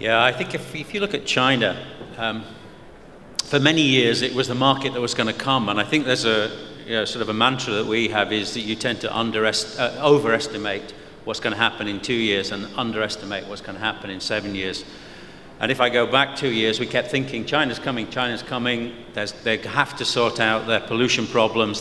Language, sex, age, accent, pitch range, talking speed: English, male, 50-69, British, 110-130 Hz, 230 wpm